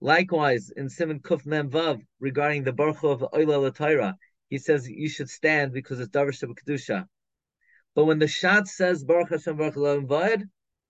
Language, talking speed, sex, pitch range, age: English, 165 wpm, male, 140-180 Hz, 30-49